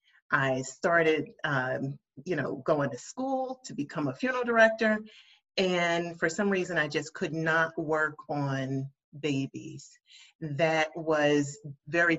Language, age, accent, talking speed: English, 40-59, American, 135 wpm